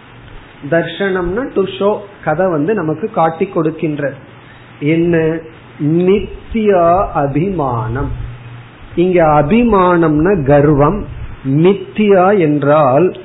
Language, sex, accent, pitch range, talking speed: Tamil, male, native, 135-175 Hz, 70 wpm